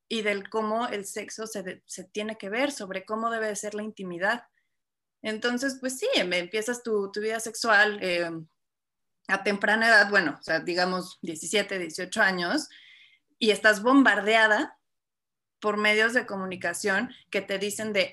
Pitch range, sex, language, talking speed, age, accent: 195-250 Hz, female, Spanish, 160 wpm, 20-39, Mexican